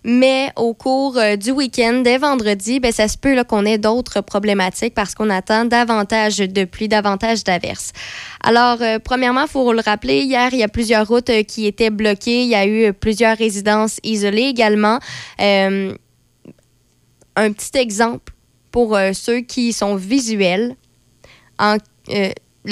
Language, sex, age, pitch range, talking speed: French, female, 20-39, 210-255 Hz, 165 wpm